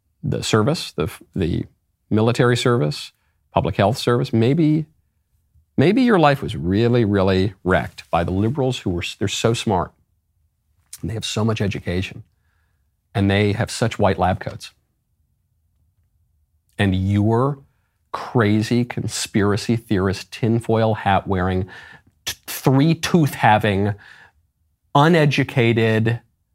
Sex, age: male, 40-59